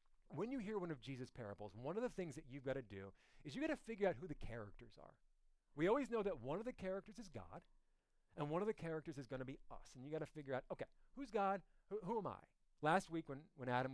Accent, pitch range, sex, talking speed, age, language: American, 130-210 Hz, male, 270 wpm, 40-59, English